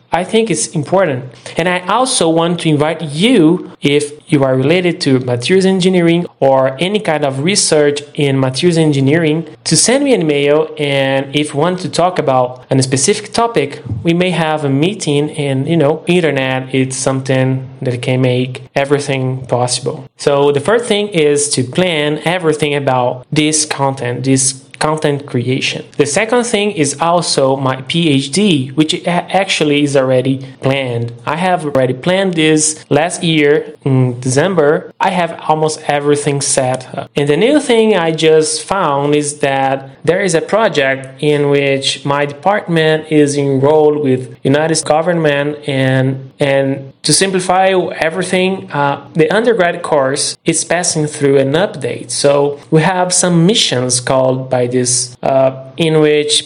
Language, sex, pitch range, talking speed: English, male, 135-170 Hz, 155 wpm